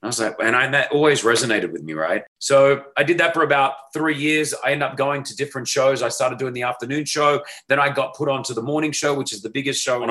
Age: 30-49